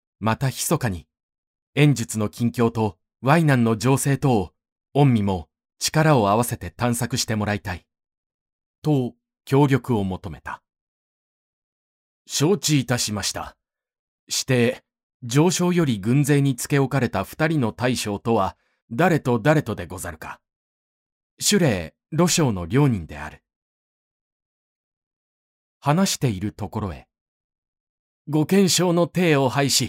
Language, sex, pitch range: Japanese, male, 90-145 Hz